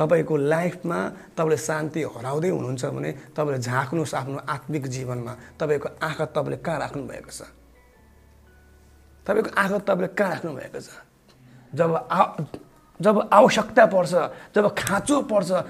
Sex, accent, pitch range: male, Indian, 135-195 Hz